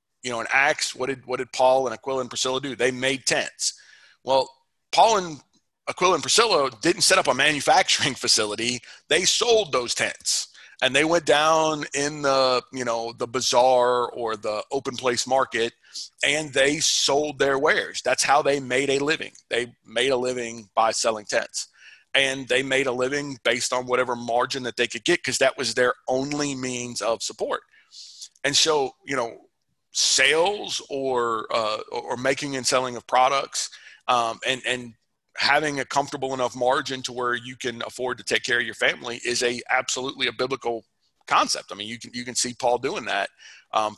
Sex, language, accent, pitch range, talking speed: male, English, American, 120-140 Hz, 185 wpm